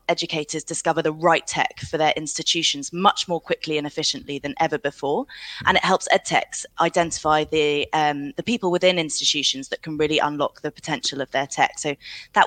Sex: female